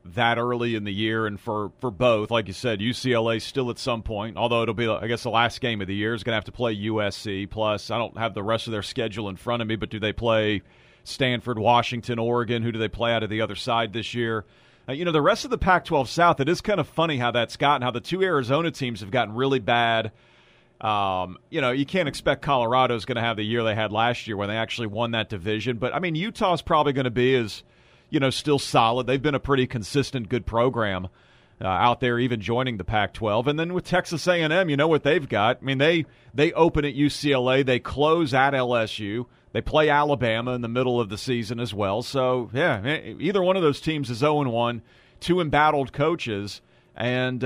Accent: American